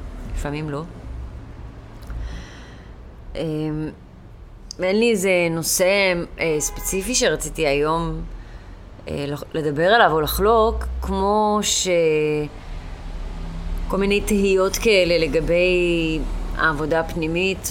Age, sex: 30-49, female